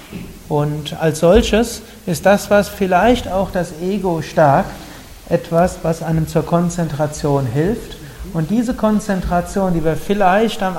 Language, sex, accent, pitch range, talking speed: German, male, German, 150-185 Hz, 135 wpm